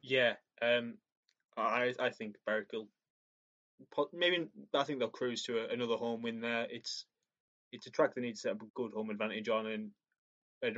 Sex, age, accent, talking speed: male, 10-29, British, 190 wpm